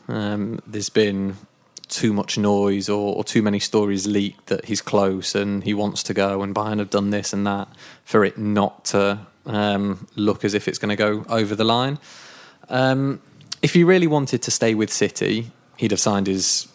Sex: male